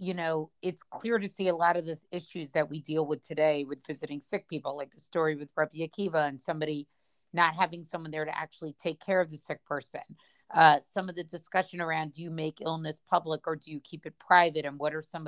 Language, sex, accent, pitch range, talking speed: English, female, American, 150-180 Hz, 240 wpm